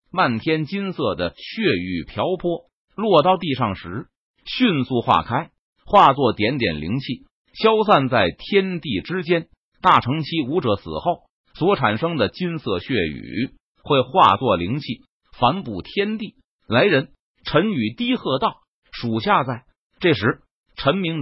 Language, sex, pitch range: Chinese, male, 115-185 Hz